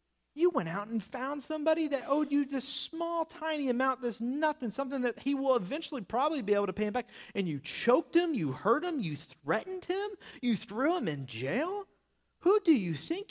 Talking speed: 205 wpm